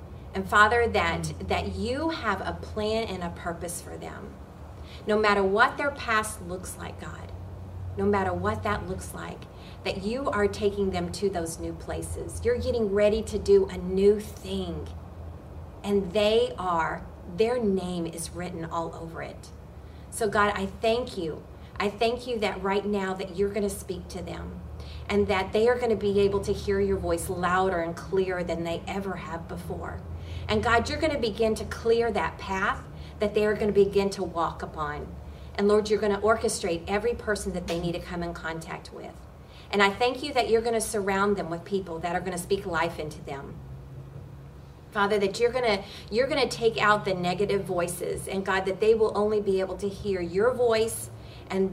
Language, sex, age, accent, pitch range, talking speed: English, female, 30-49, American, 165-210 Hz, 200 wpm